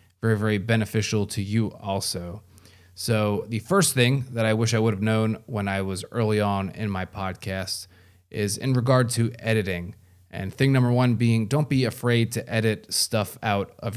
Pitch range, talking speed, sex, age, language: 95-115 Hz, 185 wpm, male, 30-49, English